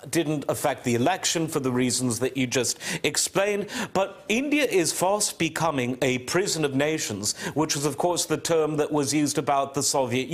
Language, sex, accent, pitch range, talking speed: English, male, British, 130-170 Hz, 185 wpm